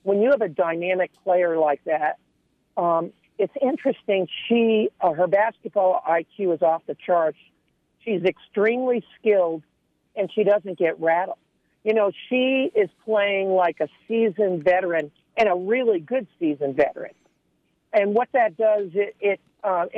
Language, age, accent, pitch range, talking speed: English, 50-69, American, 170-220 Hz, 150 wpm